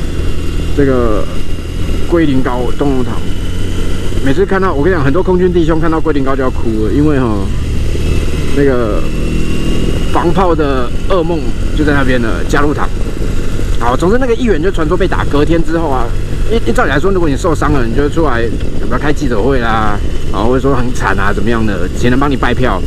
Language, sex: Chinese, male